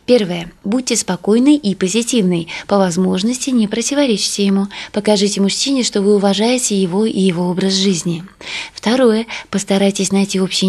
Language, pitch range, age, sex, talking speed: Russian, 180-235 Hz, 20-39, female, 135 wpm